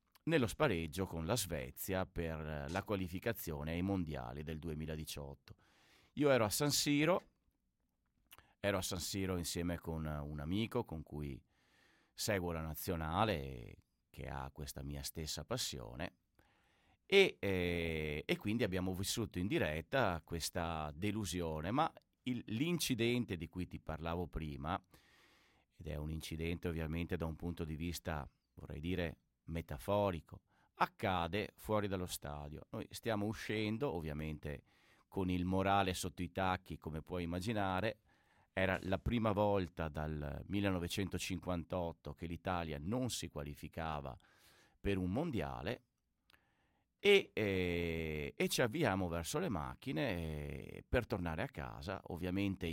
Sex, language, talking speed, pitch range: male, Italian, 125 wpm, 80-100 Hz